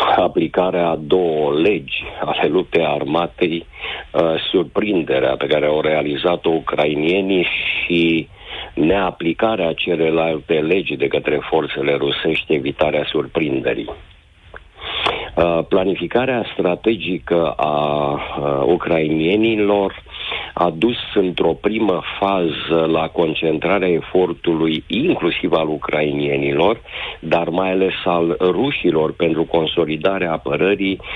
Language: Romanian